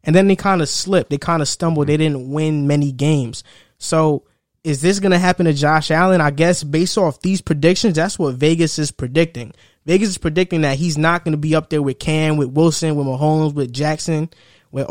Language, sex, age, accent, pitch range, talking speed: English, male, 20-39, American, 145-165 Hz, 220 wpm